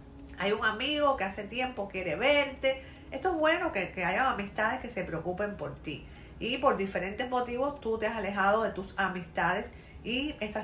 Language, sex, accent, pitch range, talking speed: Spanish, female, American, 195-270 Hz, 185 wpm